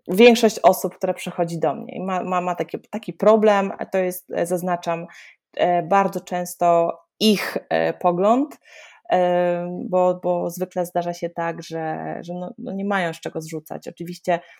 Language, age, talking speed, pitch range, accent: Polish, 20-39, 150 wpm, 175-200 Hz, native